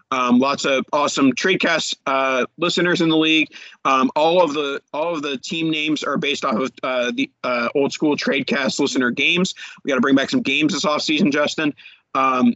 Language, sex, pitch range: English, male, 135-180 Hz